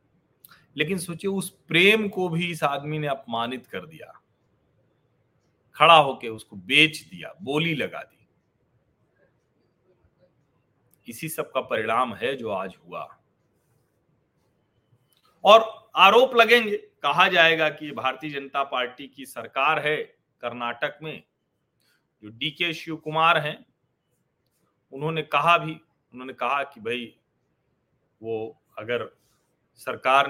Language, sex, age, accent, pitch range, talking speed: Hindi, male, 40-59, native, 130-170 Hz, 115 wpm